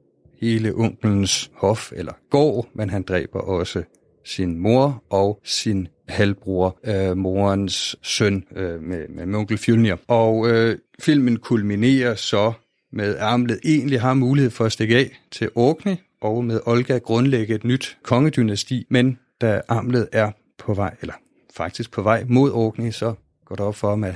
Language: Danish